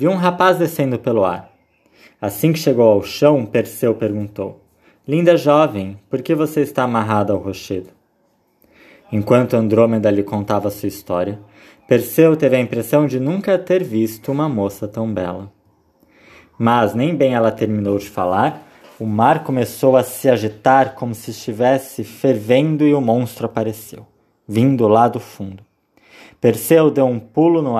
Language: Portuguese